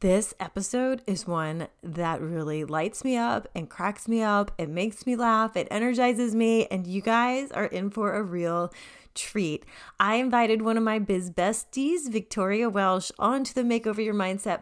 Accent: American